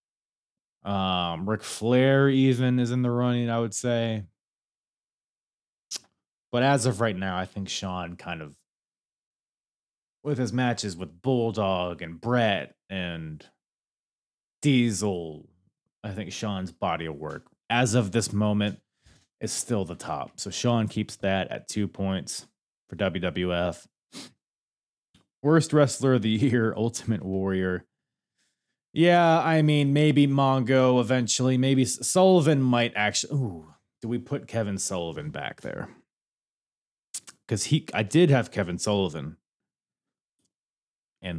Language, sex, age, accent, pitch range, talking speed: English, male, 20-39, American, 95-130 Hz, 125 wpm